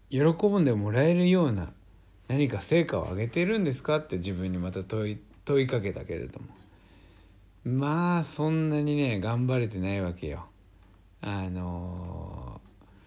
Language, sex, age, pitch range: Japanese, male, 60-79, 95-130 Hz